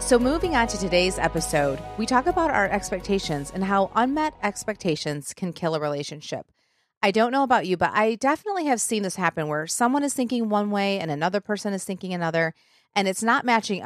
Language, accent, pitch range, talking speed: English, American, 160-210 Hz, 205 wpm